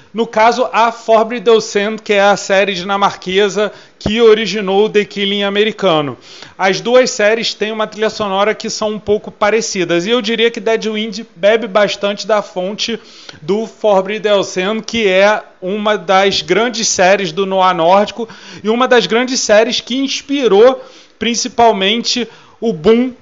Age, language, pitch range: 30-49, Portuguese, 200-230 Hz